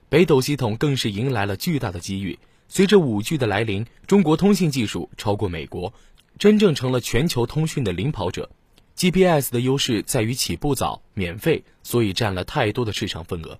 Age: 20-39